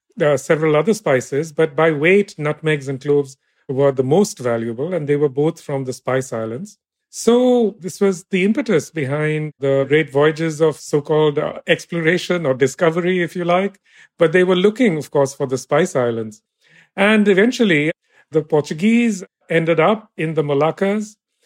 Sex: male